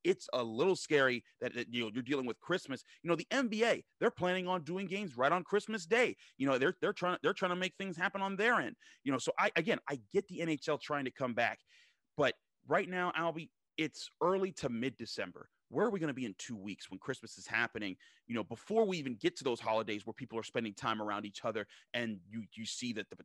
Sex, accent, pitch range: male, American, 115-150 Hz